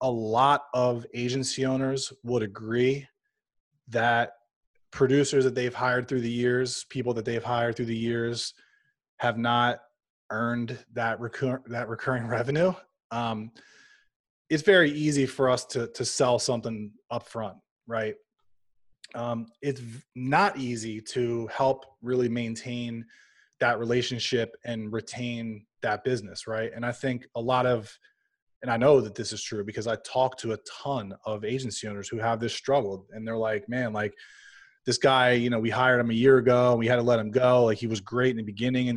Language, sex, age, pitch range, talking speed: English, male, 20-39, 115-130 Hz, 175 wpm